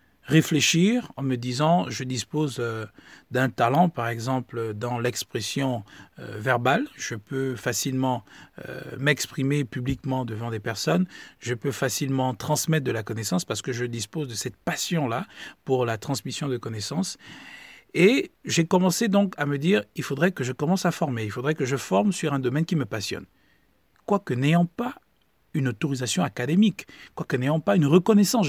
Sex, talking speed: male, 160 wpm